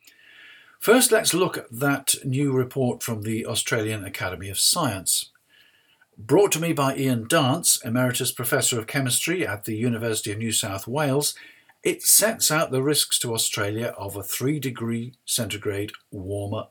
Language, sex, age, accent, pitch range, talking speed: English, male, 50-69, British, 110-150 Hz, 155 wpm